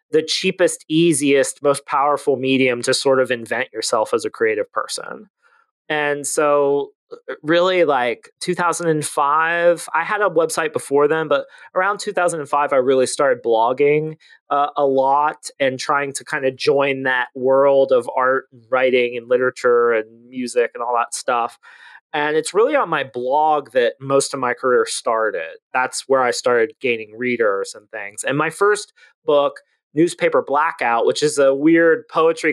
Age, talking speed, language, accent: 30-49, 160 wpm, English, American